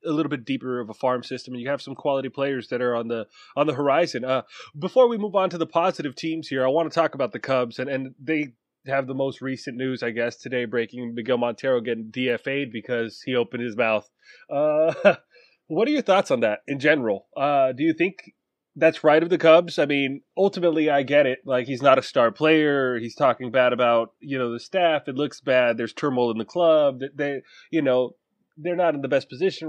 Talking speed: 230 wpm